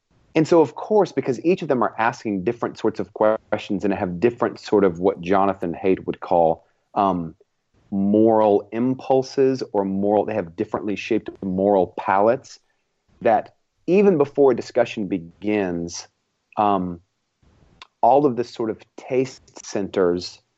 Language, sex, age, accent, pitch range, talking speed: English, male, 30-49, American, 95-125 Hz, 145 wpm